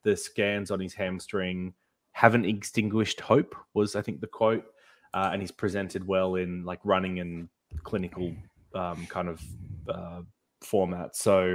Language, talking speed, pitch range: English, 150 wpm, 95-110 Hz